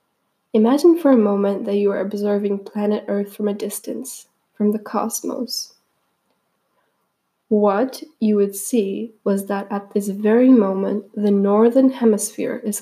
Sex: female